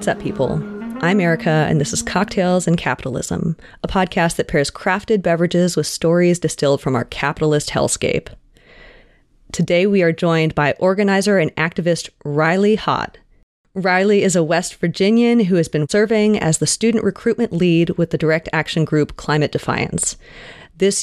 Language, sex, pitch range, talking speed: English, female, 150-185 Hz, 160 wpm